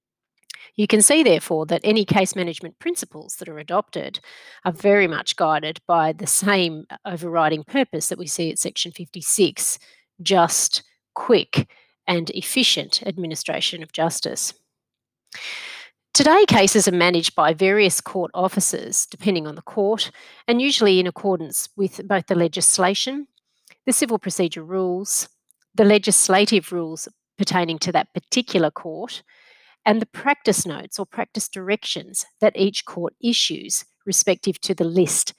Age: 30-49